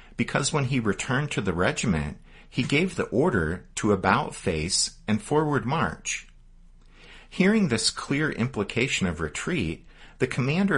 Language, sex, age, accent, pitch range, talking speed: English, male, 50-69, American, 90-145 Hz, 130 wpm